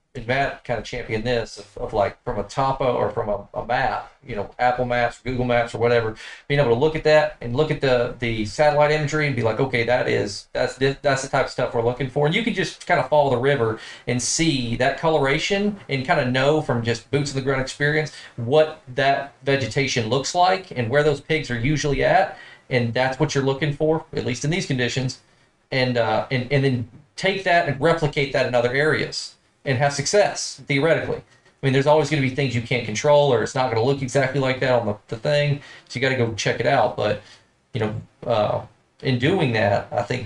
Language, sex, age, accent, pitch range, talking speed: English, male, 40-59, American, 115-145 Hz, 240 wpm